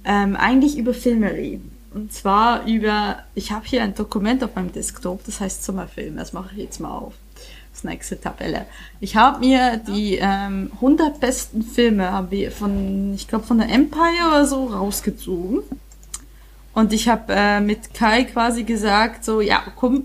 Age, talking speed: 20-39, 175 wpm